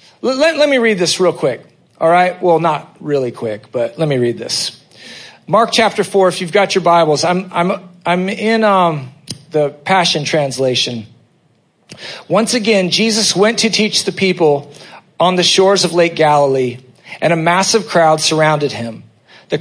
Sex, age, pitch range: male, 40-59, 165-205 Hz